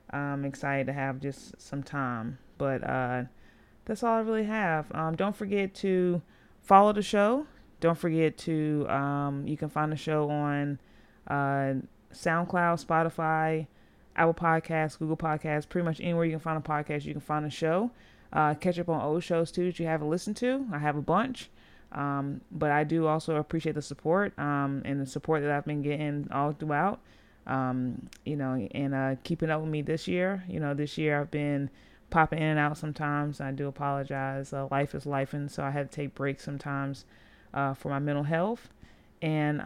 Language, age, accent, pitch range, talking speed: English, 30-49, American, 140-170 Hz, 195 wpm